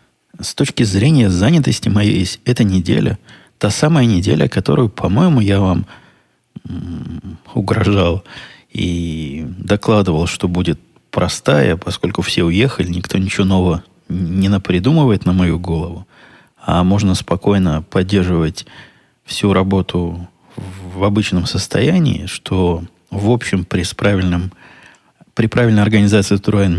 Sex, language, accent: male, Russian, native